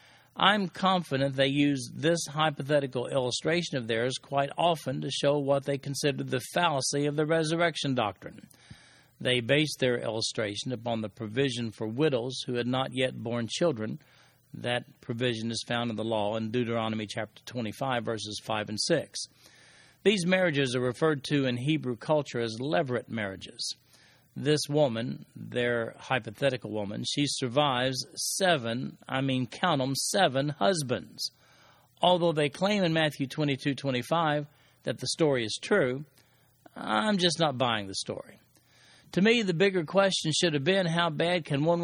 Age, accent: 50-69, American